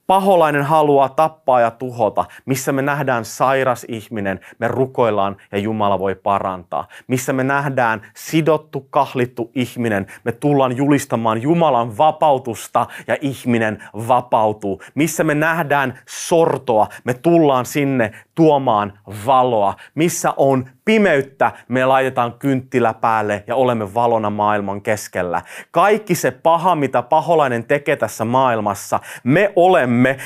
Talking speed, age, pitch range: 120 wpm, 30-49, 120-165 Hz